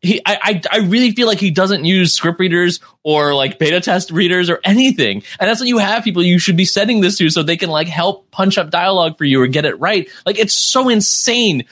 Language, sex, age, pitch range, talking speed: English, male, 20-39, 155-210 Hz, 250 wpm